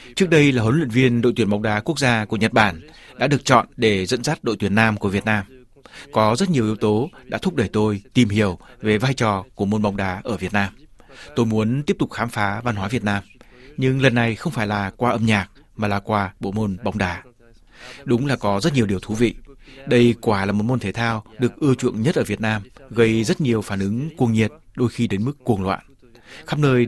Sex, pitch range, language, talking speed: male, 105-125 Hz, Vietnamese, 250 wpm